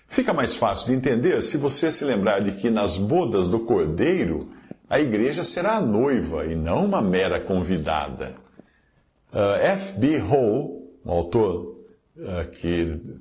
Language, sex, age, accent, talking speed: Portuguese, male, 50-69, Brazilian, 140 wpm